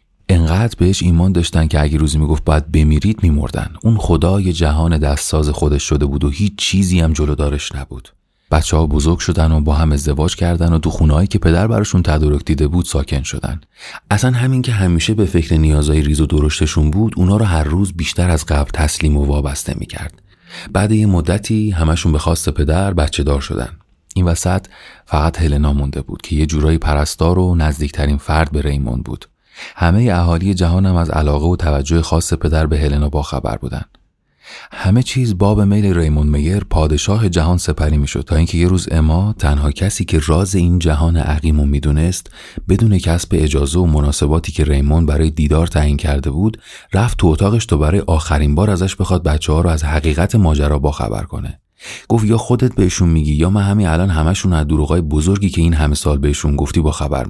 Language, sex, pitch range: Persian, male, 75-95 Hz